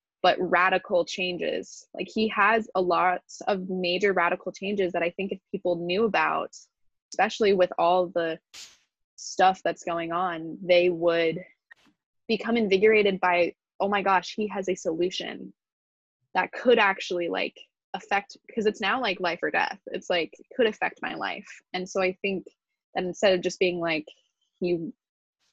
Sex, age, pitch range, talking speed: female, 20-39, 175-205 Hz, 160 wpm